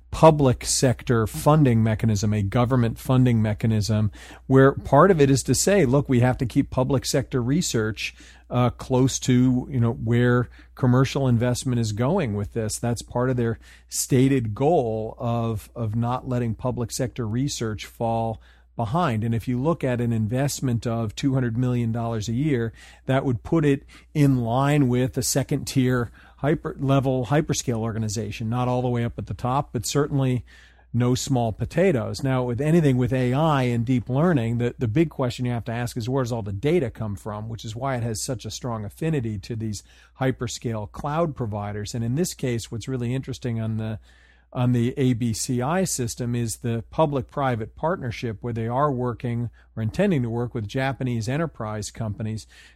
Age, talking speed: 40-59, 180 wpm